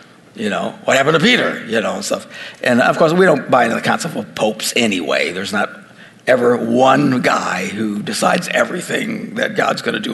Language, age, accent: English, 60-79, American